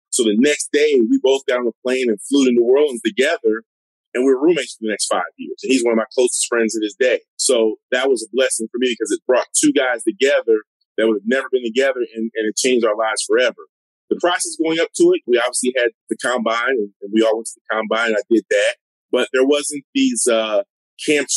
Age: 30-49